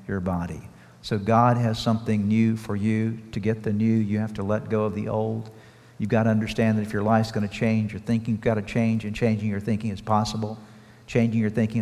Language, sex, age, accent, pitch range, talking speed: English, male, 50-69, American, 105-120 Hz, 235 wpm